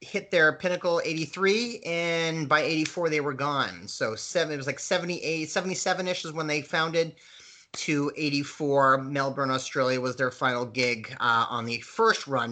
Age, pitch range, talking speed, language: 30-49, 125-155 Hz, 170 wpm, English